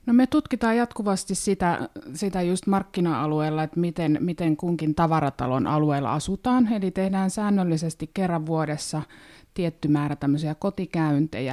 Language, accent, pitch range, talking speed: Finnish, native, 145-190 Hz, 120 wpm